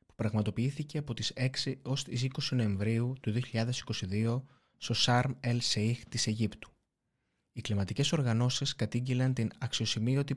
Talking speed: 115 wpm